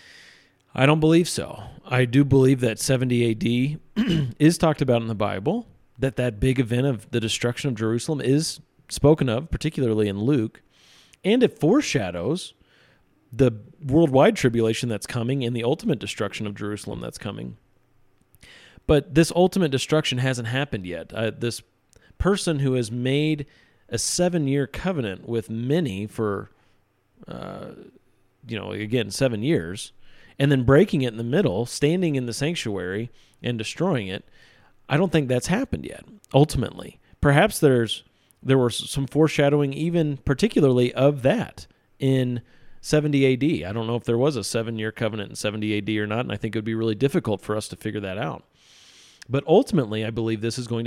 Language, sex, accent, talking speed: English, male, American, 165 wpm